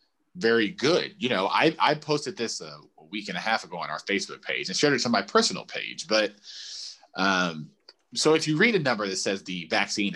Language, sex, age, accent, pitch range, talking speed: English, male, 30-49, American, 95-150 Hz, 220 wpm